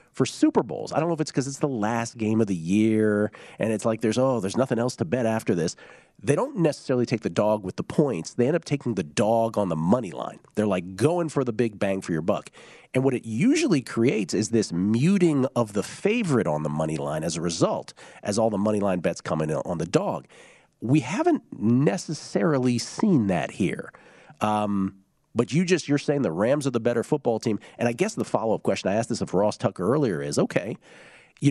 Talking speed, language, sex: 230 wpm, English, male